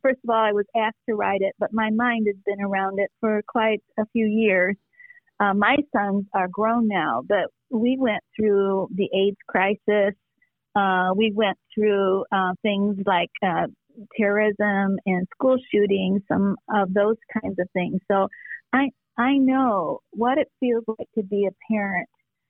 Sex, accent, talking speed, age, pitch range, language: female, American, 170 wpm, 40-59, 195-235 Hz, English